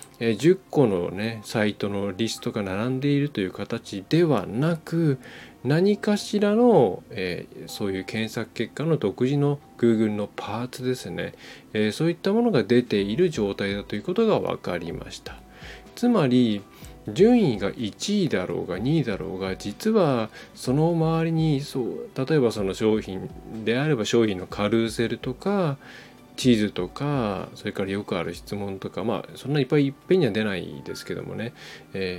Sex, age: male, 20-39